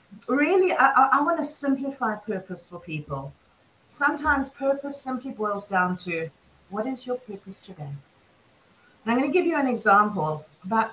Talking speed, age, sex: 160 wpm, 40-59, female